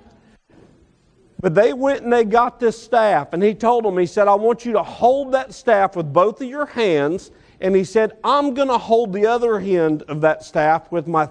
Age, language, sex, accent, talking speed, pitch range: 50-69, English, male, American, 220 wpm, 140-210 Hz